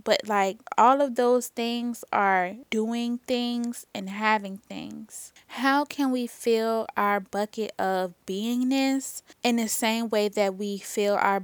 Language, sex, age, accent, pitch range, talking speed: English, female, 10-29, American, 200-235 Hz, 145 wpm